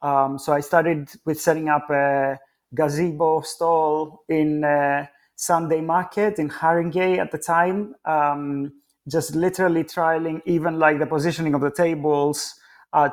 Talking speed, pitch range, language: 135 wpm, 145-165 Hz, English